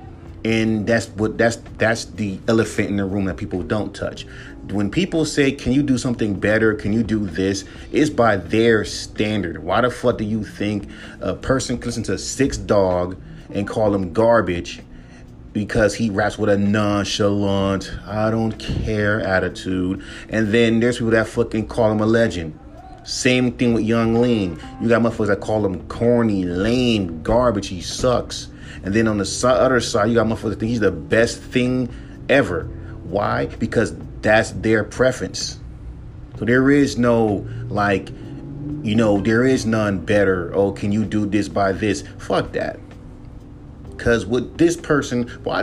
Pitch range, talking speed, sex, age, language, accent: 100-120 Hz, 170 wpm, male, 30-49, English, American